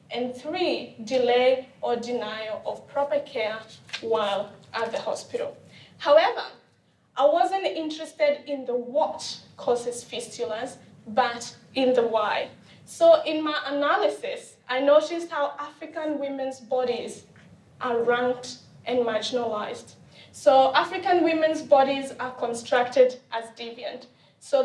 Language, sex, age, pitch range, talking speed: English, female, 20-39, 240-290 Hz, 115 wpm